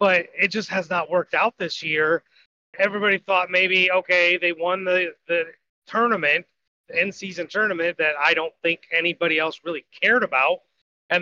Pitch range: 175-205 Hz